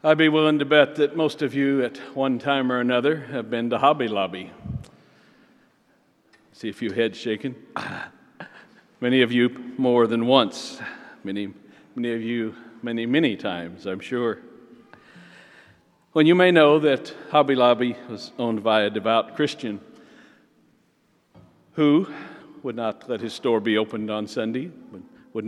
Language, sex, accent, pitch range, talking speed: English, male, American, 110-140 Hz, 150 wpm